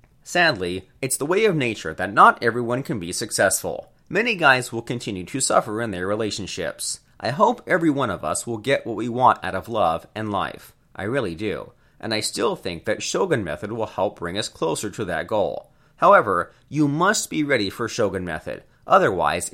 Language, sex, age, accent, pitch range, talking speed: English, male, 30-49, American, 105-150 Hz, 195 wpm